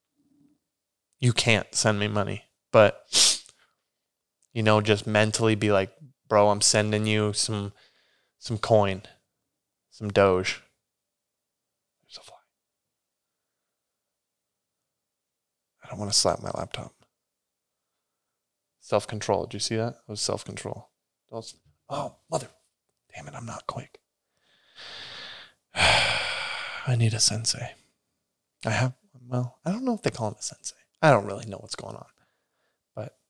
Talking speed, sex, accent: 125 wpm, male, American